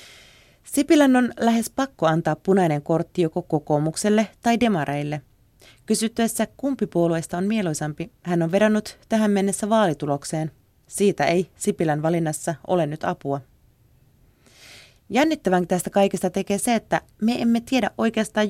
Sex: female